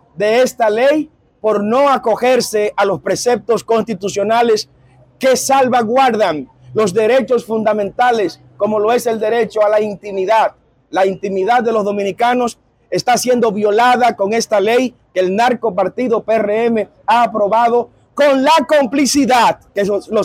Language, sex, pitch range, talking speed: Spanish, male, 210-260 Hz, 135 wpm